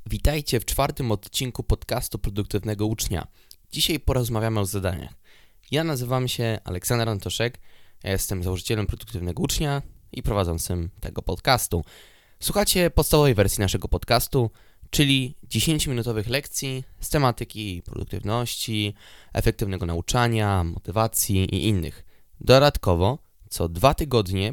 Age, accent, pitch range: 20-39, native, 95-130 Hz